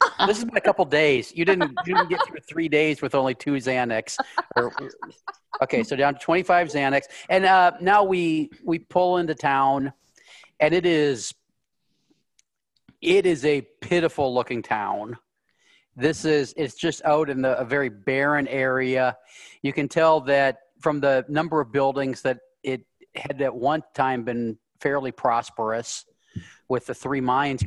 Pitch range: 120-150 Hz